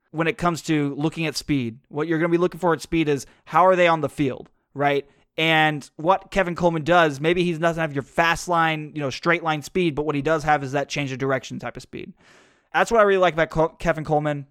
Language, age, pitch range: English, 20-39, 145-190 Hz